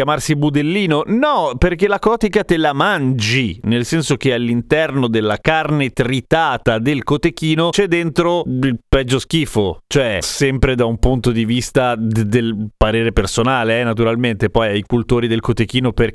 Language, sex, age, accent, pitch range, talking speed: Italian, male, 40-59, native, 130-170 Hz, 150 wpm